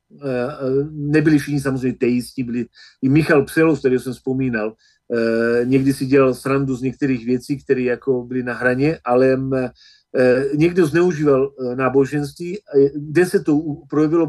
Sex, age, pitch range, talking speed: male, 40-59, 135-155 Hz, 125 wpm